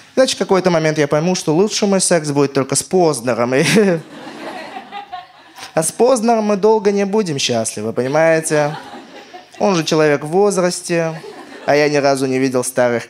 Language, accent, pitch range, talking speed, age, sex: Russian, native, 150-205 Hz, 160 wpm, 20-39, male